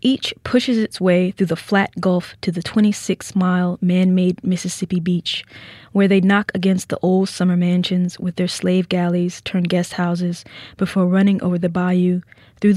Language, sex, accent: English, female, American